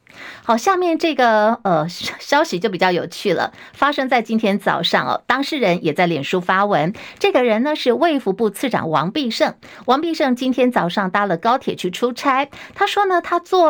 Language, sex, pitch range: Chinese, female, 185-270 Hz